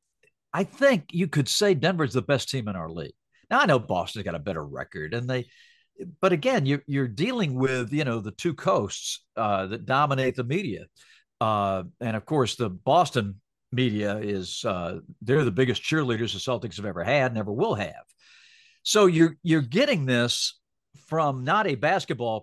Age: 50-69